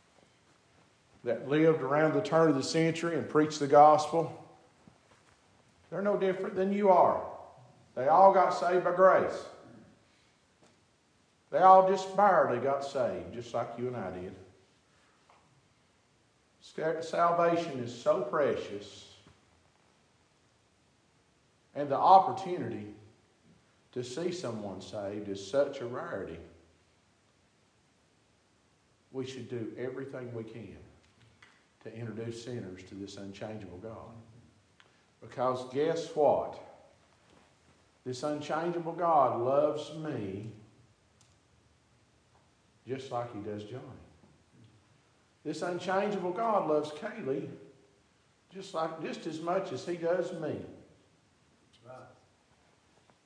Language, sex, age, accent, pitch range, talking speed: English, male, 50-69, American, 110-170 Hz, 105 wpm